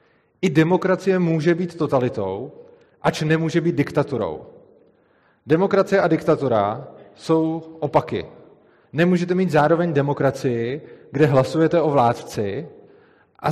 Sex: male